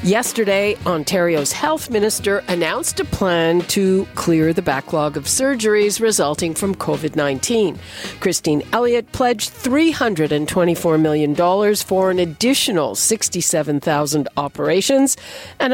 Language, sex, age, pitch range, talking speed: English, female, 50-69, 165-230 Hz, 105 wpm